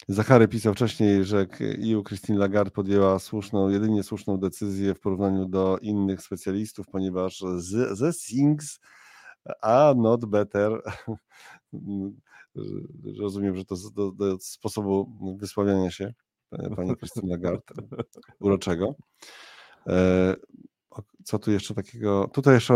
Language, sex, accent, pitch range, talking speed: Polish, male, native, 95-110 Hz, 110 wpm